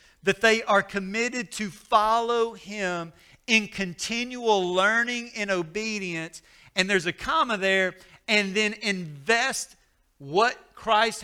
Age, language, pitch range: 50-69, English, 180-230 Hz